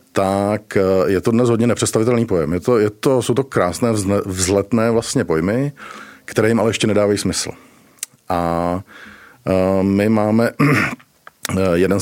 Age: 50-69